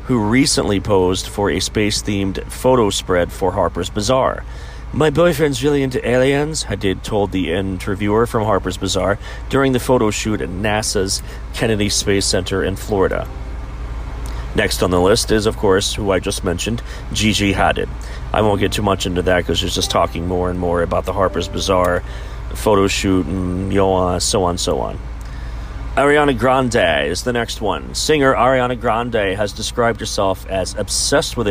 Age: 40-59